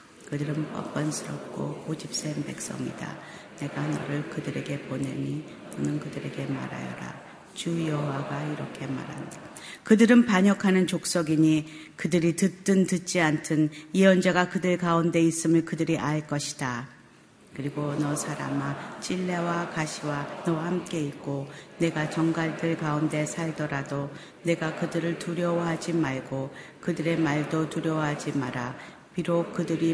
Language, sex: Korean, female